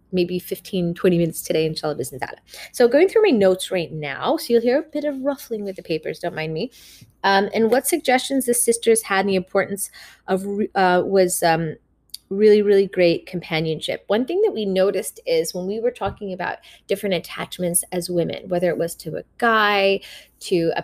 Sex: female